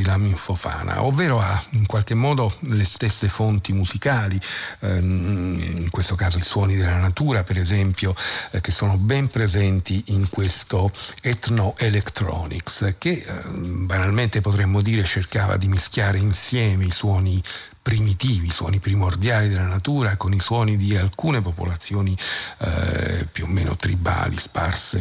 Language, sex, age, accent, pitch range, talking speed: Italian, male, 50-69, native, 95-110 Hz, 130 wpm